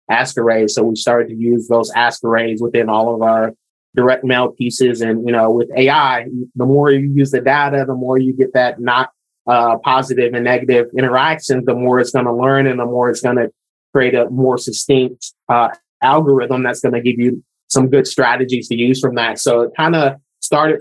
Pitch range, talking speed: 120-135 Hz, 210 wpm